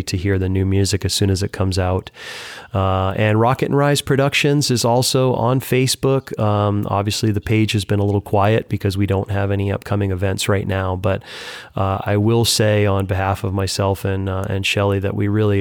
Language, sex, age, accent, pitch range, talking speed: English, male, 30-49, American, 95-115 Hz, 210 wpm